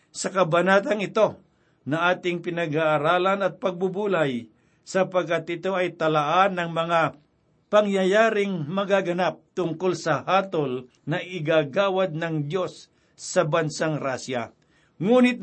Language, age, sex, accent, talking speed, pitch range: Filipino, 60-79, male, native, 105 wpm, 160-190 Hz